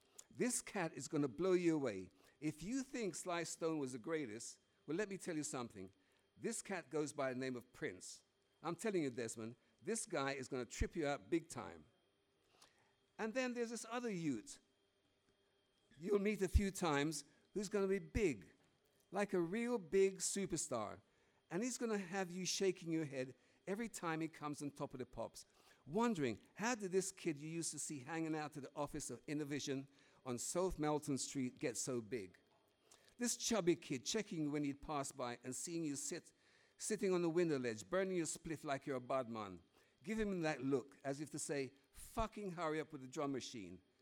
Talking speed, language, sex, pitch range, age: 195 wpm, English, male, 135-185 Hz, 60-79